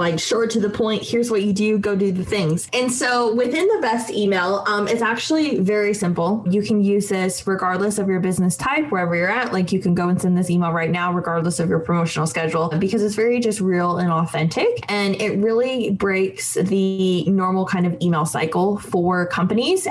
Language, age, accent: English, 20-39, American